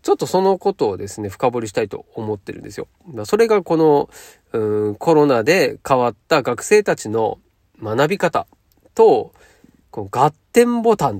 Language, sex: Japanese, male